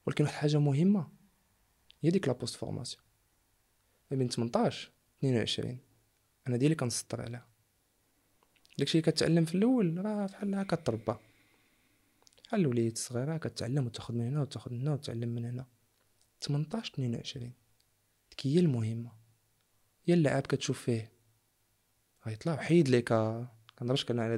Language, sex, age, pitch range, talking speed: Arabic, male, 20-39, 110-135 Hz, 95 wpm